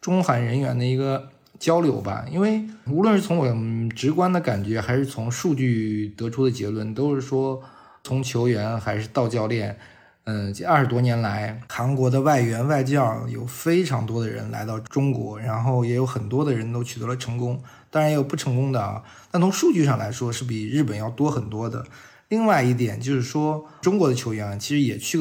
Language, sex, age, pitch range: Chinese, male, 20-39, 115-145 Hz